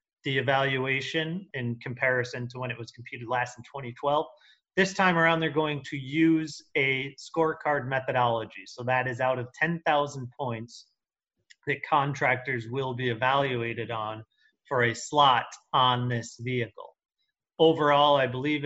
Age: 30-49